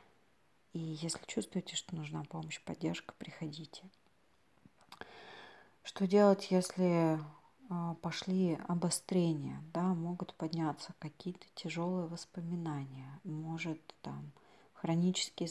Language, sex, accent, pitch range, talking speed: Russian, female, native, 160-190 Hz, 85 wpm